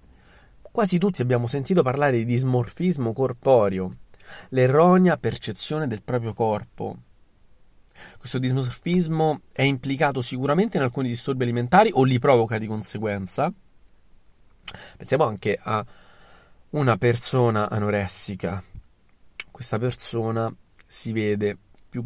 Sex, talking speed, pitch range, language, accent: male, 105 wpm, 95-130 Hz, Italian, native